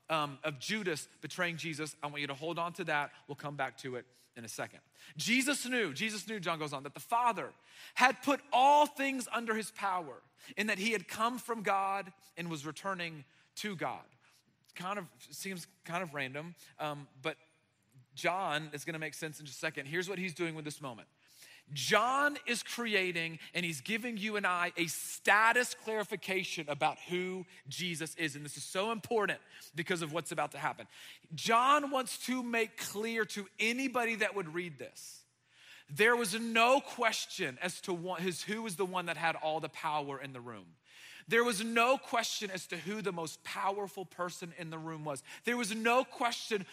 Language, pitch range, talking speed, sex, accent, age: English, 155-220 Hz, 190 wpm, male, American, 30-49